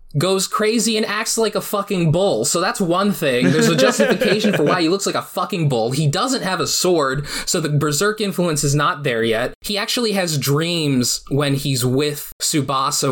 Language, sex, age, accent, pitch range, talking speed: English, male, 20-39, American, 140-195 Hz, 200 wpm